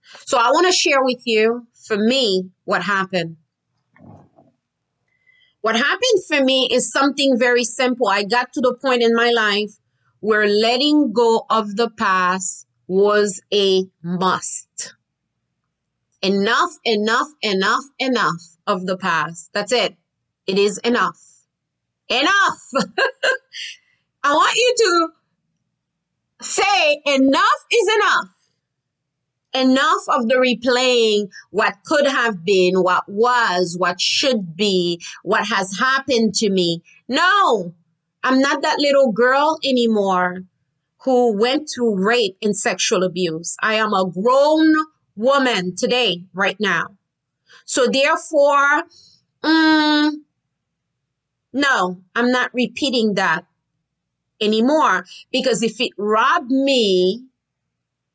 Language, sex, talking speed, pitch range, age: English, female, 115 wpm, 190-275 Hz, 30-49